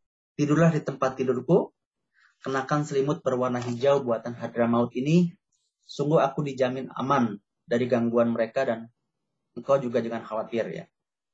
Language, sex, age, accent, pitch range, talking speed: Indonesian, male, 30-49, native, 120-150 Hz, 130 wpm